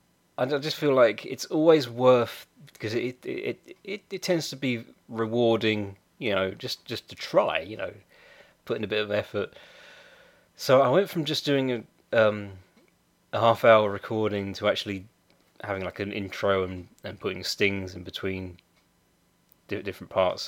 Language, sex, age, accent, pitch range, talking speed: English, male, 30-49, British, 100-125 Hz, 165 wpm